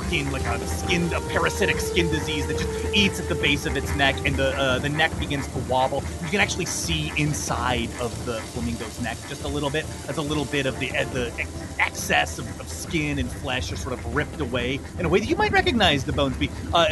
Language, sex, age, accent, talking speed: English, male, 30-49, American, 240 wpm